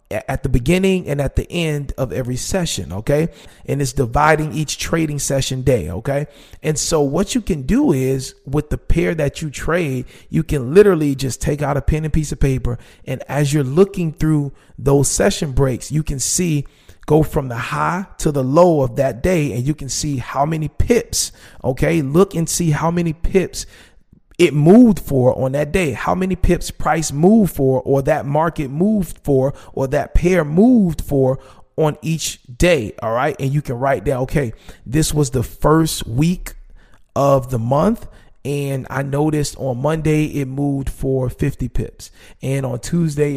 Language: English